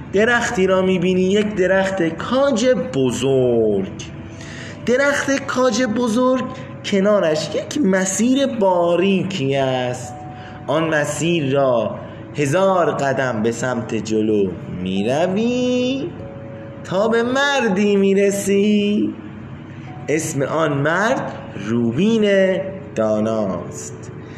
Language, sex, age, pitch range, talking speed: Persian, male, 30-49, 140-210 Hz, 80 wpm